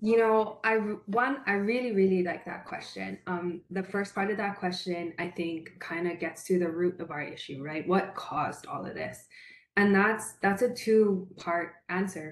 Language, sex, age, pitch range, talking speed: English, female, 20-39, 170-200 Hz, 195 wpm